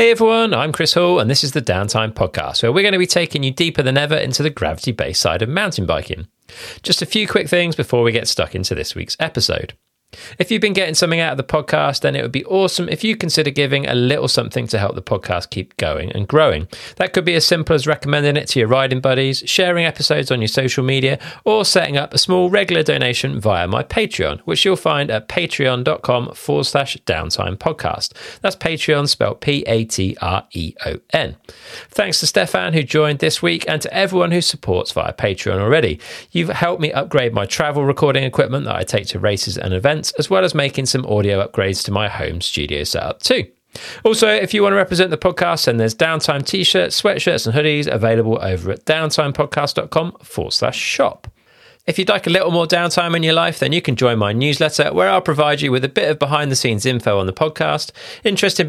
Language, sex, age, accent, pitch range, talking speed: English, male, 40-59, British, 120-170 Hz, 215 wpm